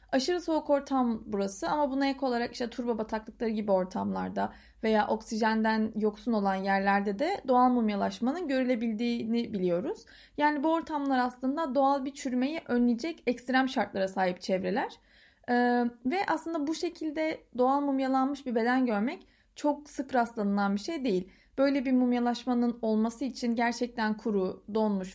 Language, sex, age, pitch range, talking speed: Turkish, female, 30-49, 225-285 Hz, 140 wpm